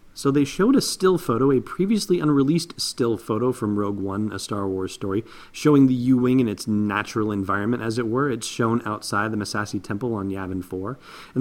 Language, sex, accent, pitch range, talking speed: English, male, American, 105-135 Hz, 200 wpm